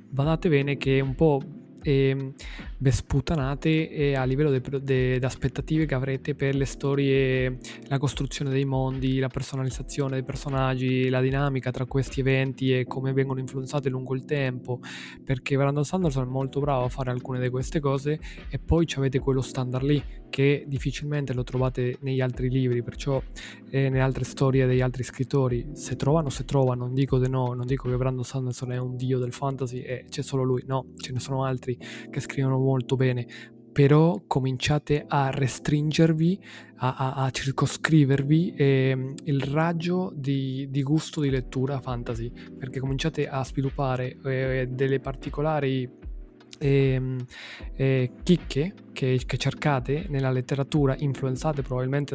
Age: 20-39